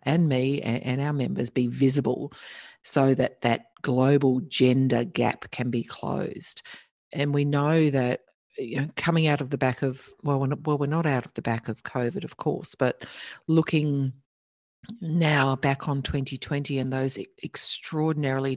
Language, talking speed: English, 150 wpm